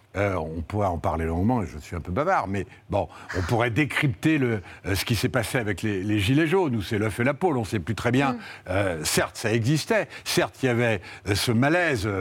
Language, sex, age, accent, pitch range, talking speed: French, male, 70-89, French, 100-135 Hz, 240 wpm